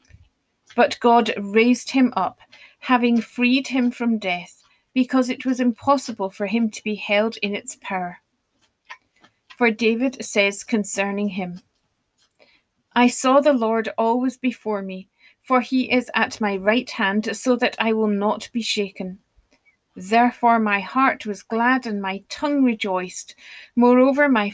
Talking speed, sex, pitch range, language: 145 wpm, female, 205-250 Hz, English